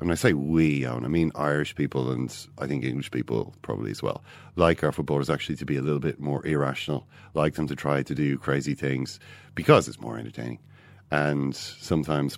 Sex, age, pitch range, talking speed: male, 40-59, 70-95 Hz, 205 wpm